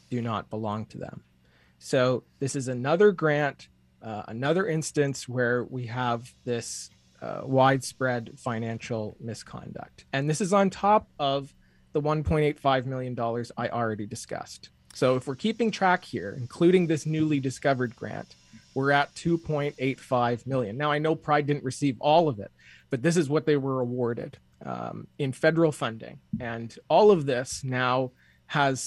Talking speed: 155 wpm